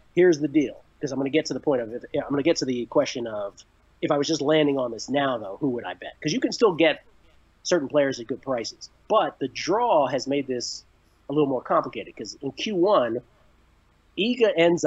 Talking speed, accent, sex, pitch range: 240 wpm, American, male, 120-160 Hz